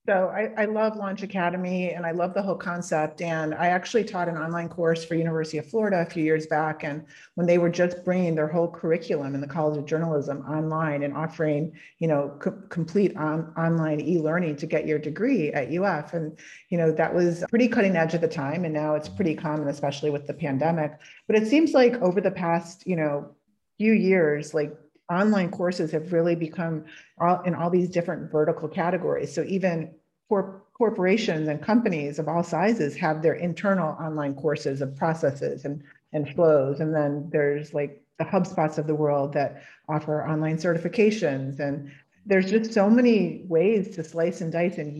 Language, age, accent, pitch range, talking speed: English, 40-59, American, 155-185 Hz, 190 wpm